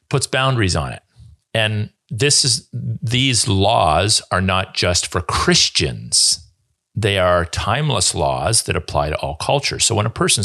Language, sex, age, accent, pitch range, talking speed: English, male, 40-59, American, 85-110 Hz, 155 wpm